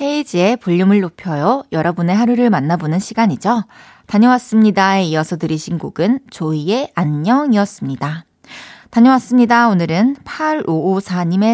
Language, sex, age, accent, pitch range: Korean, female, 20-39, native, 185-255 Hz